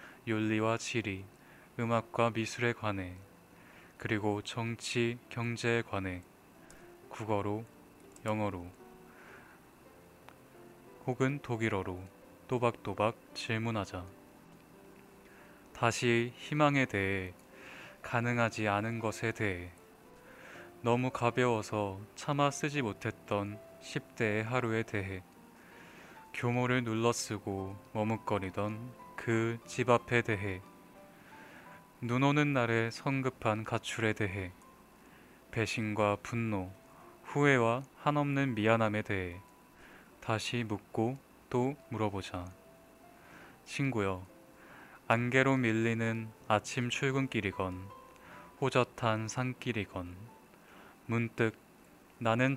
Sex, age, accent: male, 20-39, native